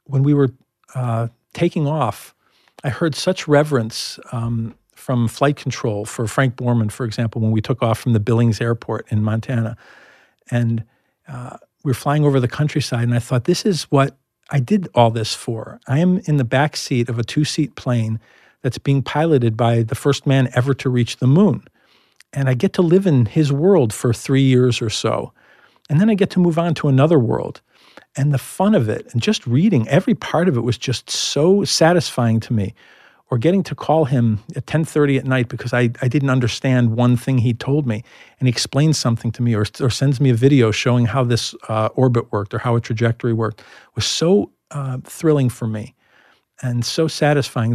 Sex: male